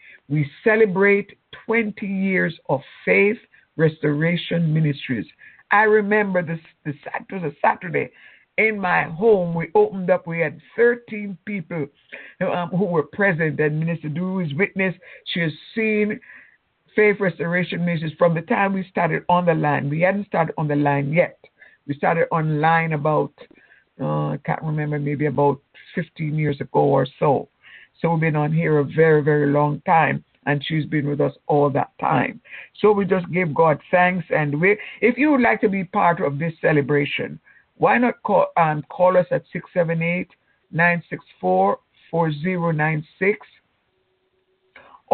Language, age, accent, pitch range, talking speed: English, 60-79, American, 155-200 Hz, 150 wpm